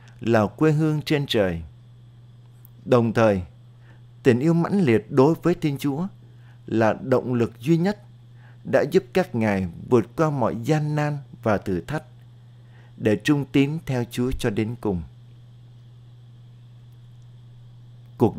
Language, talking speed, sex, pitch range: Vietnamese, 135 wpm, male, 115-135 Hz